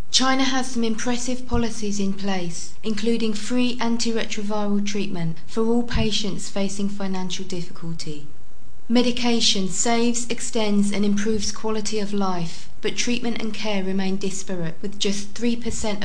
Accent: British